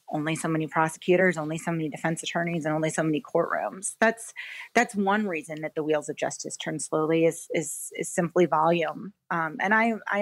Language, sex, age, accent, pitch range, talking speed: English, female, 30-49, American, 160-185 Hz, 200 wpm